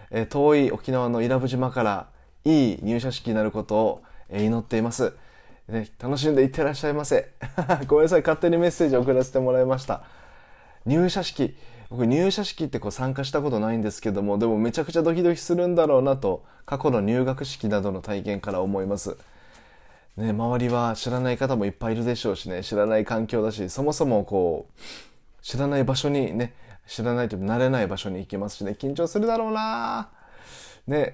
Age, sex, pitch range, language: 20-39, male, 110-165 Hz, Japanese